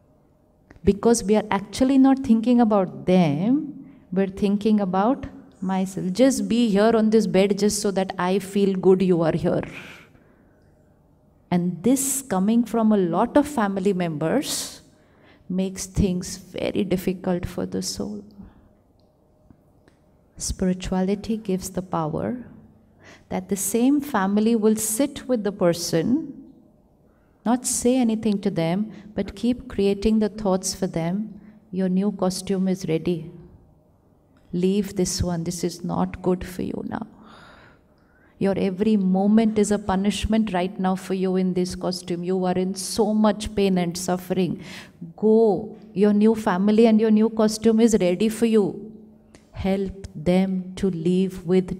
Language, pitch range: English, 180-215 Hz